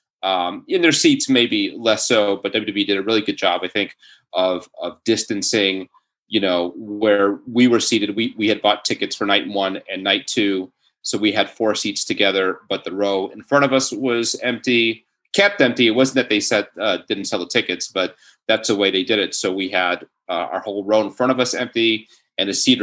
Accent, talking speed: American, 225 wpm